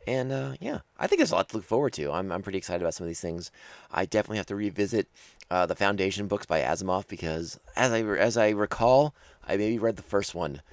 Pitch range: 90-125 Hz